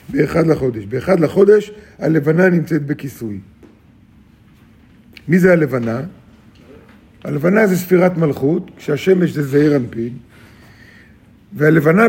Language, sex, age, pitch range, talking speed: Hebrew, male, 50-69, 140-185 Hz, 95 wpm